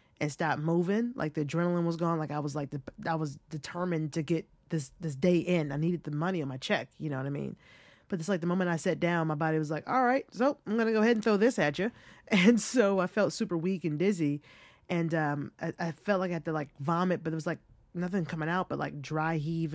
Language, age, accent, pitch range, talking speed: English, 20-39, American, 150-180 Hz, 265 wpm